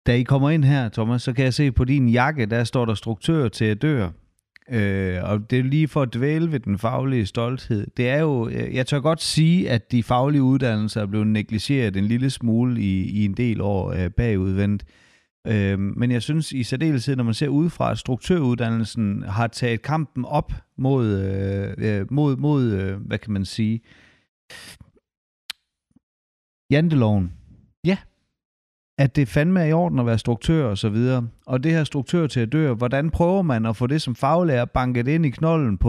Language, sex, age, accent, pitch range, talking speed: Danish, male, 30-49, native, 105-140 Hz, 185 wpm